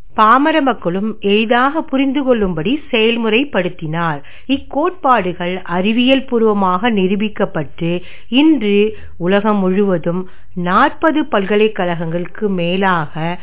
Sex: female